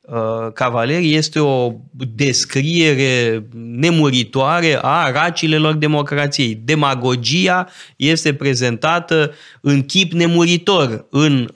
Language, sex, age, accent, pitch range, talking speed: Romanian, male, 20-39, native, 125-170 Hz, 80 wpm